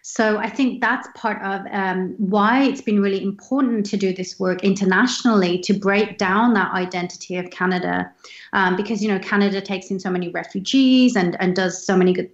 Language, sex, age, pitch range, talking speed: English, female, 30-49, 190-225 Hz, 195 wpm